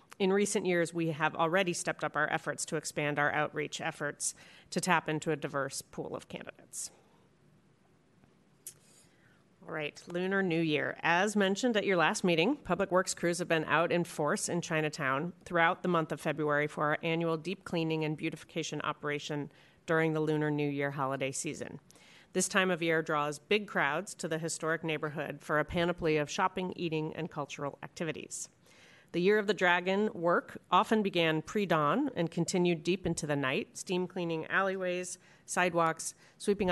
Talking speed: 170 wpm